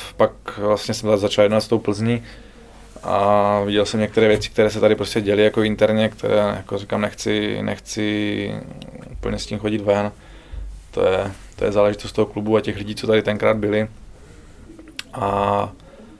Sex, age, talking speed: male, 20-39, 165 wpm